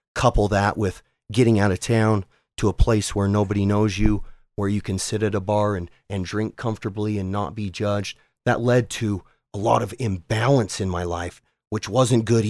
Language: English